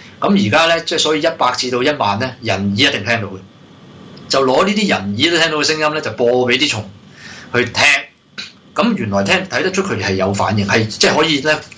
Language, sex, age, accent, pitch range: Chinese, male, 20-39, native, 100-130 Hz